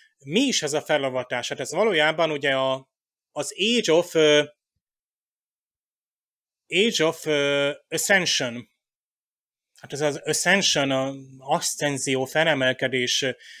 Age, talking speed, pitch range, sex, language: 30-49, 110 wpm, 135-155 Hz, male, Hungarian